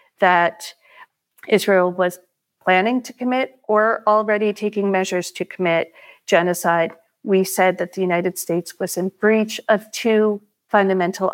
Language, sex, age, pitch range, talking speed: English, female, 40-59, 175-210 Hz, 130 wpm